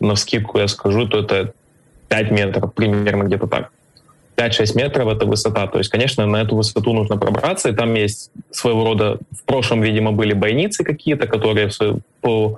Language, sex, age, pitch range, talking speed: Ukrainian, male, 20-39, 105-125 Hz, 175 wpm